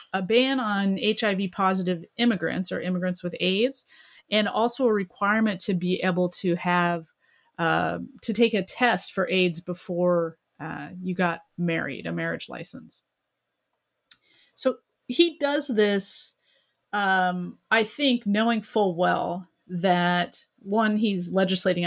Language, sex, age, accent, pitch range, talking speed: English, female, 30-49, American, 180-225 Hz, 130 wpm